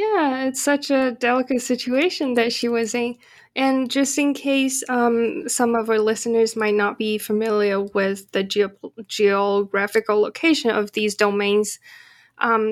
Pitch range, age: 205-270 Hz, 10-29